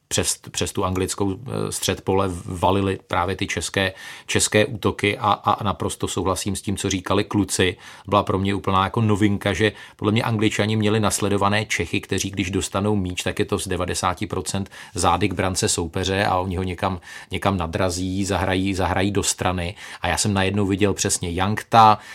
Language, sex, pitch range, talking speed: Czech, male, 90-105 Hz, 170 wpm